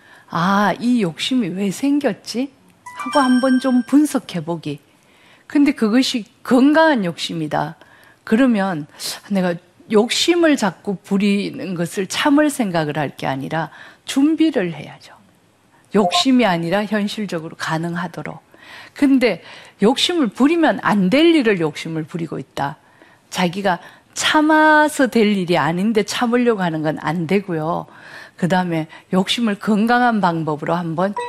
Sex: female